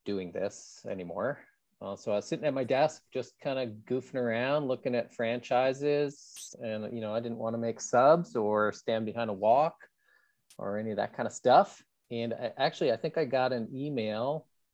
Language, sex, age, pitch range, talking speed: English, male, 20-39, 110-145 Hz, 195 wpm